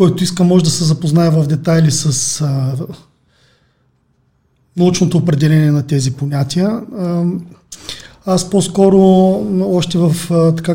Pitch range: 155-180 Hz